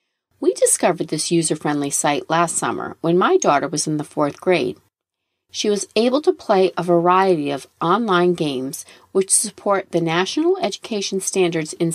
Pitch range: 165-255 Hz